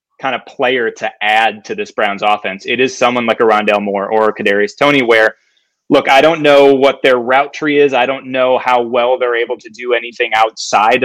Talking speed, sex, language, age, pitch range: 225 wpm, male, English, 20-39, 110-140 Hz